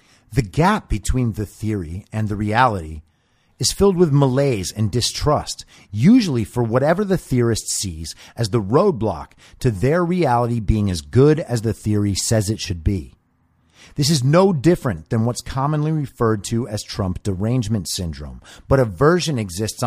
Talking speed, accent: 155 wpm, American